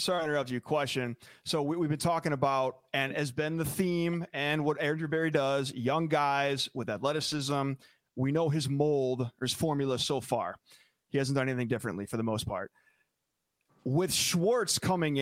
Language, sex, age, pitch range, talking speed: English, male, 30-49, 140-170 Hz, 180 wpm